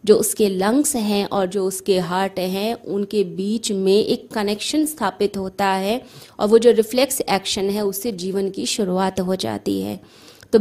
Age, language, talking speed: 20-39, Hindi, 175 wpm